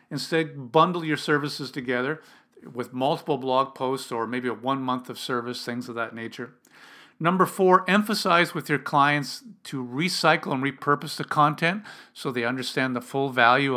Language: English